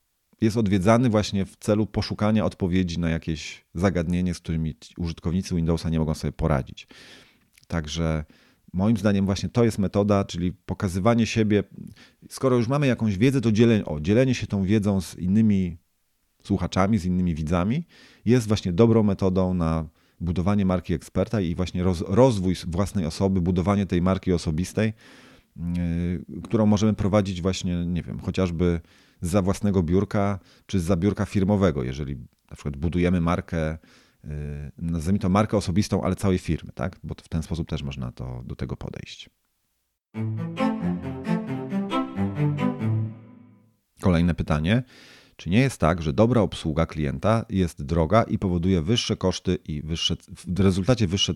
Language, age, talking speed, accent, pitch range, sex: Polish, 40-59, 140 wpm, native, 85-105 Hz, male